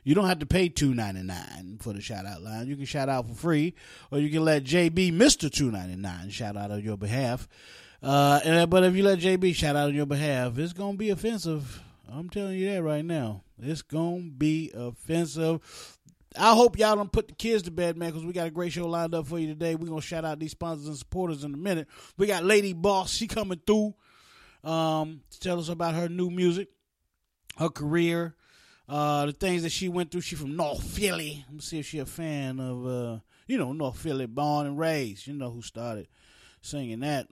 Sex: male